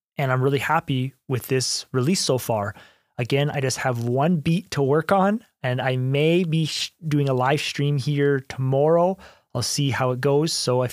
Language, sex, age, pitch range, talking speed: English, male, 30-49, 130-160 Hz, 190 wpm